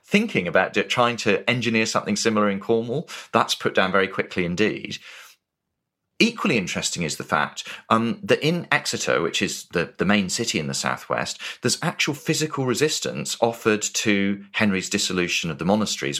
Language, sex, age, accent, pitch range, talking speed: English, male, 30-49, British, 95-135 Hz, 165 wpm